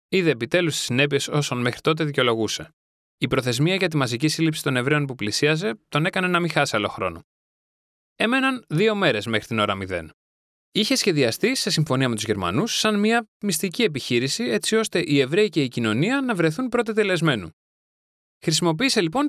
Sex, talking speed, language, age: male, 170 wpm, Greek, 20-39